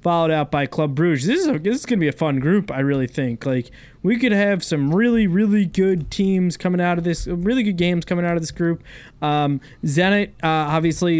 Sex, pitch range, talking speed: male, 140-170 Hz, 230 wpm